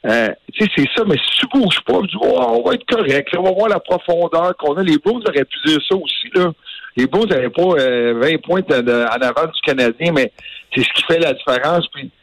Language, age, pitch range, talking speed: French, 60-79, 120-160 Hz, 235 wpm